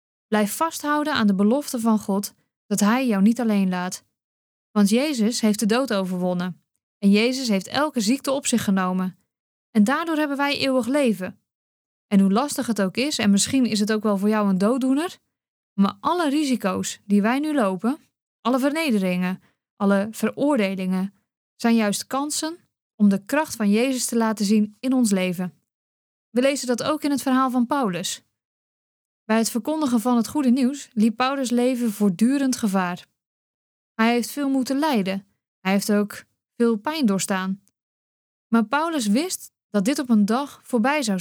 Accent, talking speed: Dutch, 170 wpm